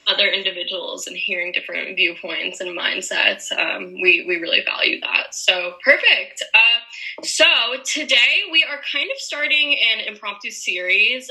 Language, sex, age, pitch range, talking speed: English, female, 10-29, 190-280 Hz, 145 wpm